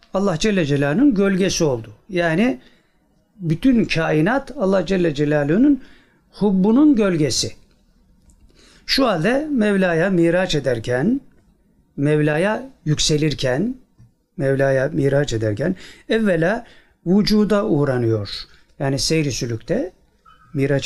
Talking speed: 85 wpm